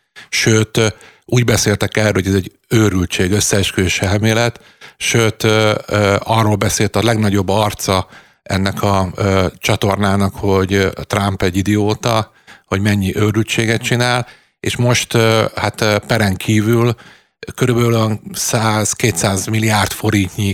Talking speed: 105 wpm